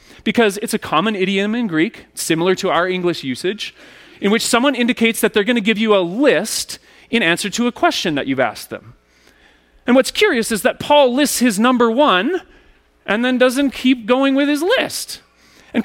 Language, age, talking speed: English, 30-49, 195 wpm